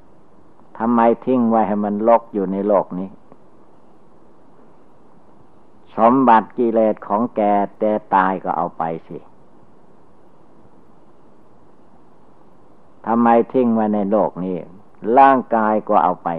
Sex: male